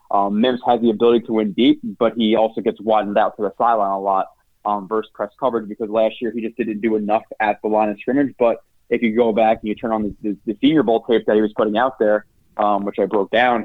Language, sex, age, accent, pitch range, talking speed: English, male, 20-39, American, 105-120 Hz, 275 wpm